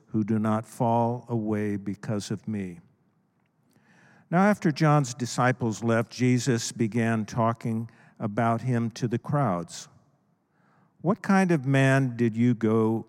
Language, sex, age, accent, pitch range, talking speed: English, male, 50-69, American, 110-145 Hz, 130 wpm